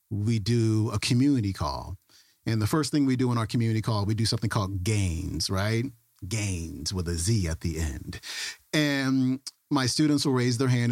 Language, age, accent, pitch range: English, 40-59, American, 90-130 Hz